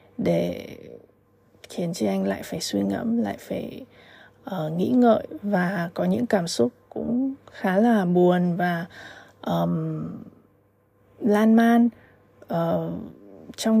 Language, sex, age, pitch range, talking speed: Vietnamese, female, 20-39, 185-235 Hz, 110 wpm